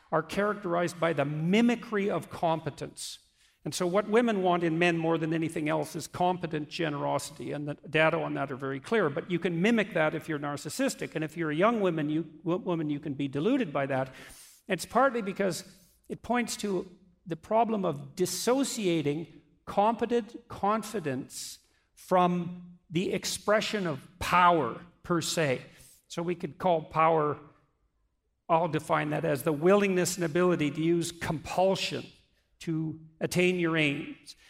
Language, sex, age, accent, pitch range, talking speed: English, male, 50-69, American, 155-190 Hz, 155 wpm